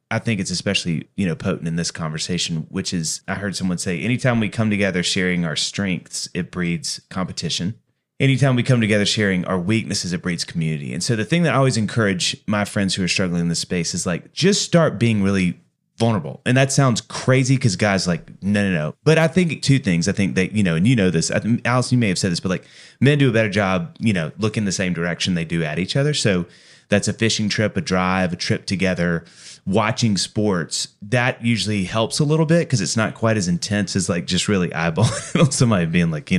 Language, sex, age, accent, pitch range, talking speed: English, male, 30-49, American, 90-125 Hz, 235 wpm